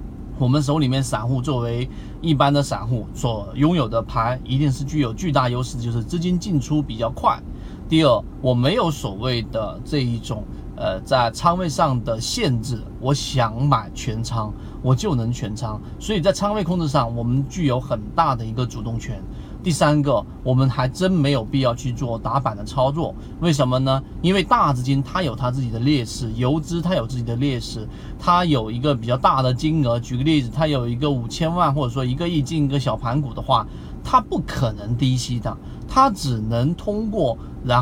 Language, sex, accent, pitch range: Chinese, male, native, 120-150 Hz